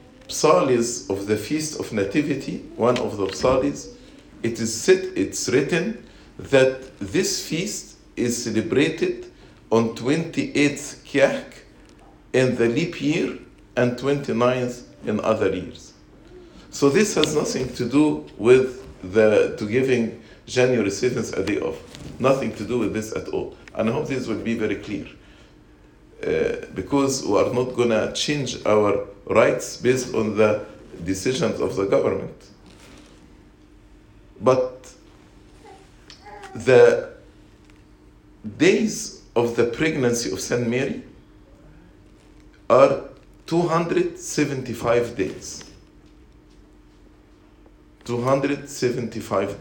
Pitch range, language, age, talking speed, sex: 105-140 Hz, English, 50-69, 110 wpm, male